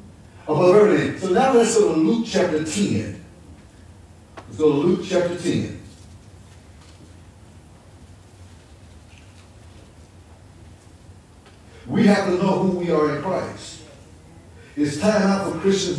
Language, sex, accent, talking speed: English, male, American, 105 wpm